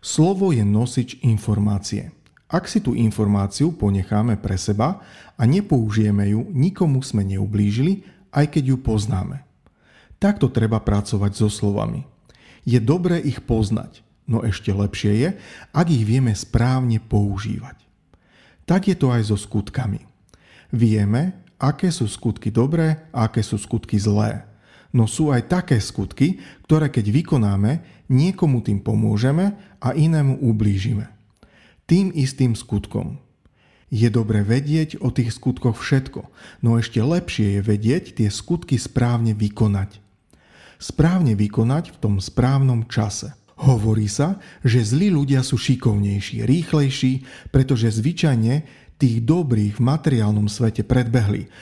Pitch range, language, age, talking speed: 105-145 Hz, Slovak, 40-59, 130 wpm